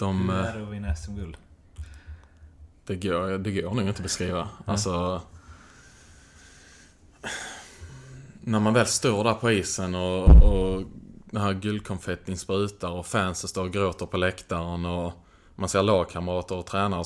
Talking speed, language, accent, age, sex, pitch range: 140 wpm, Swedish, Norwegian, 20-39, male, 85-100 Hz